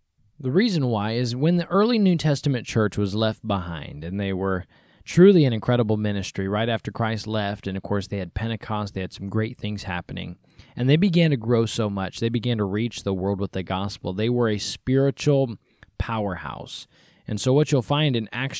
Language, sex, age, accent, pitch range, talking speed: English, male, 20-39, American, 105-145 Hz, 205 wpm